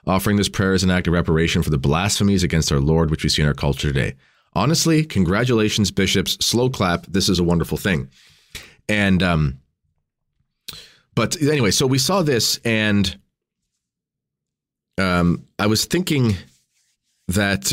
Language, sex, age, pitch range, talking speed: English, male, 30-49, 85-110 Hz, 150 wpm